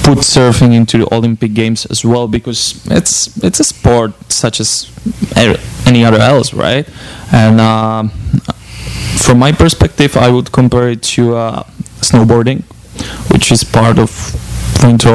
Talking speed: 145 wpm